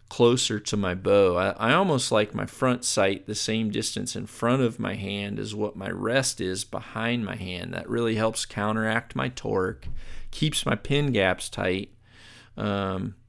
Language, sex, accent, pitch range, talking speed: English, male, American, 100-120 Hz, 175 wpm